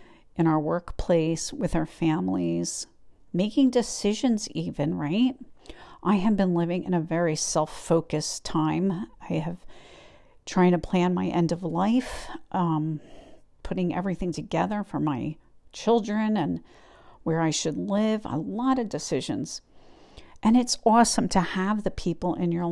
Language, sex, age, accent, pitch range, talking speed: English, female, 50-69, American, 165-210 Hz, 140 wpm